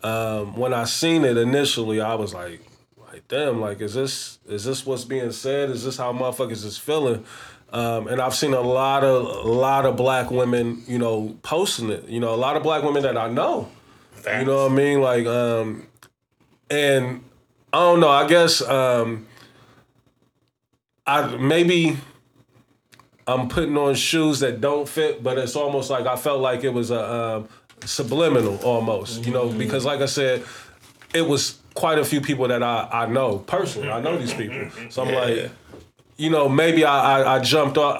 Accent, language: American, English